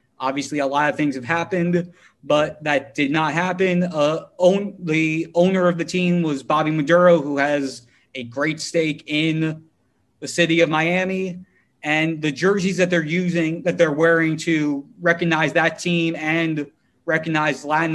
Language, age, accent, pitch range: English, 30-49, American, 155-175 Hz